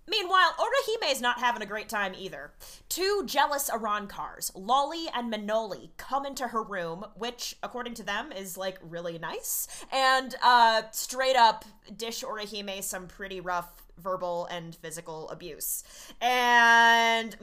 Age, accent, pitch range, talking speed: 20-39, American, 195-265 Hz, 140 wpm